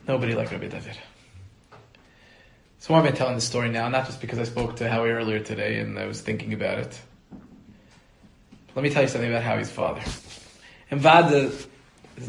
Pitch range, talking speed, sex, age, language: 115-150 Hz, 190 wpm, male, 20-39, English